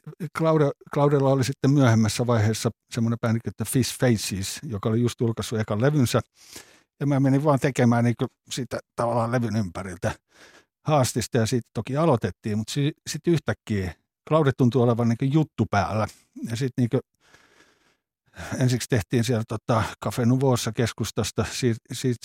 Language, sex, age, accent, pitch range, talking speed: Finnish, male, 60-79, native, 110-130 Hz, 145 wpm